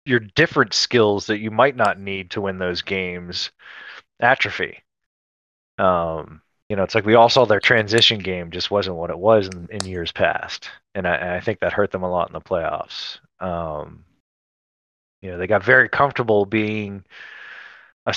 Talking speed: 180 wpm